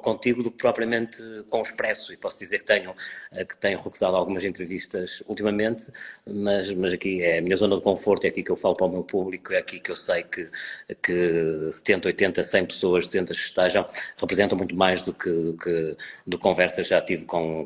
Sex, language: male, Portuguese